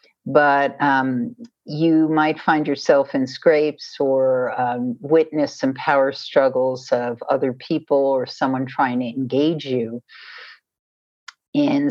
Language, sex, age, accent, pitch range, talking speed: English, female, 50-69, American, 135-180 Hz, 120 wpm